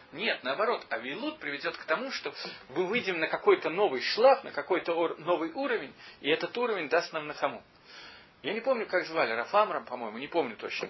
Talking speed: 185 wpm